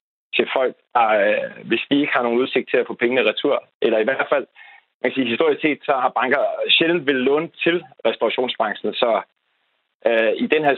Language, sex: Danish, male